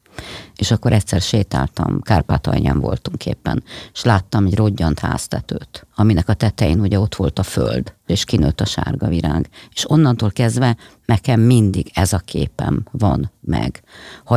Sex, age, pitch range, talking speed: female, 50-69, 95-120 Hz, 155 wpm